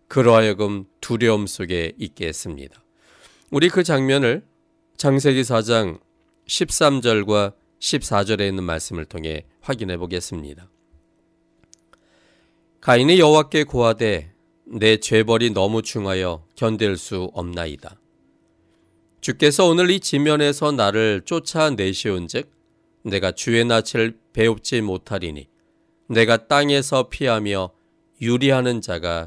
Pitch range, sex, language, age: 105-165 Hz, male, Korean, 40-59